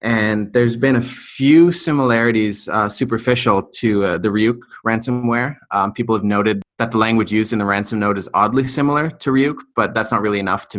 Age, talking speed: 30-49, 200 wpm